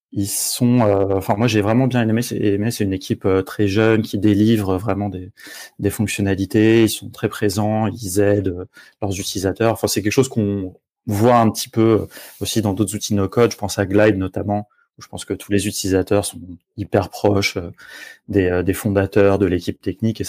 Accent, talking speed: French, 190 wpm